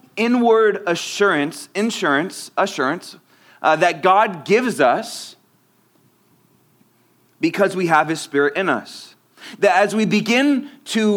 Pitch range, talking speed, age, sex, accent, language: 180-215 Hz, 115 wpm, 30-49, male, American, English